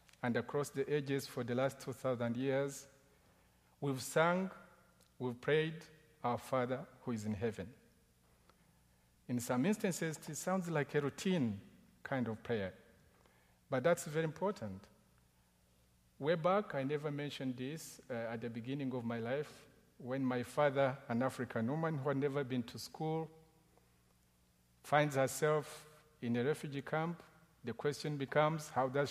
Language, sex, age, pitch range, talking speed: English, male, 50-69, 115-160 Hz, 145 wpm